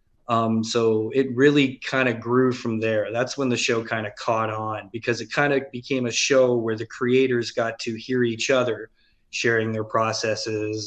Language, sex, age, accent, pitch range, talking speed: English, male, 20-39, American, 110-130 Hz, 195 wpm